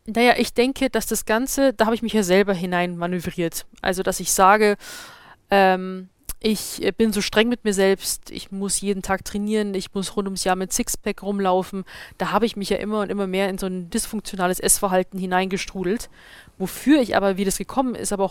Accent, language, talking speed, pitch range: German, German, 205 wpm, 190-230 Hz